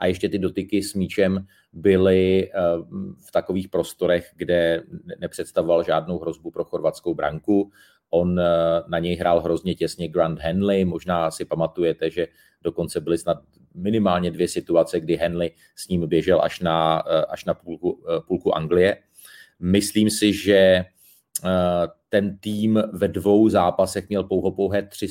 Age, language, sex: 30-49, Czech, male